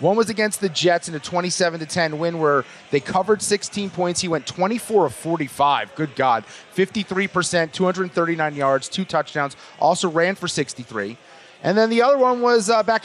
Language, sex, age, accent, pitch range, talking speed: English, male, 30-49, American, 150-190 Hz, 185 wpm